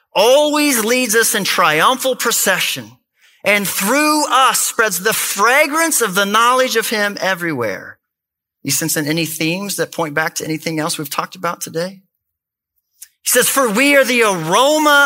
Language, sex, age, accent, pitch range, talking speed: English, male, 40-59, American, 145-195 Hz, 160 wpm